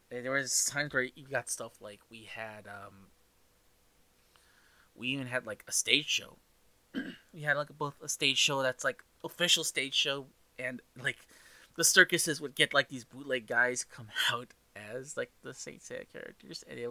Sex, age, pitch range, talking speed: male, 20-39, 120-165 Hz, 180 wpm